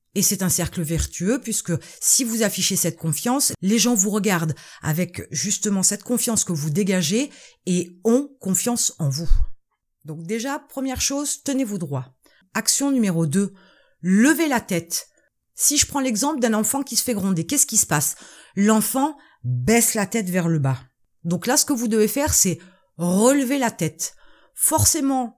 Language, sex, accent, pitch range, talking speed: French, female, French, 185-255 Hz, 170 wpm